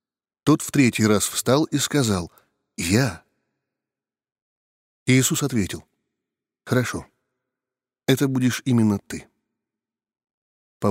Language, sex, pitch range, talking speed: Russian, male, 110-145 Hz, 95 wpm